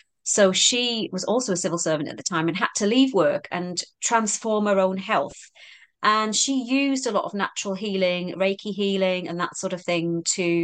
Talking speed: 205 wpm